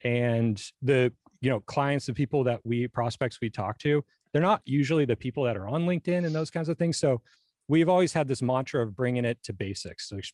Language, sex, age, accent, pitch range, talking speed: English, male, 30-49, American, 115-140 Hz, 230 wpm